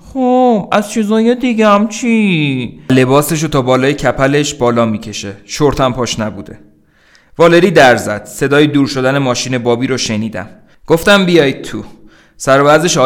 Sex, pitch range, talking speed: male, 110-145 Hz, 125 wpm